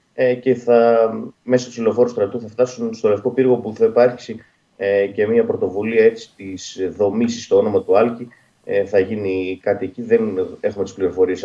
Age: 30-49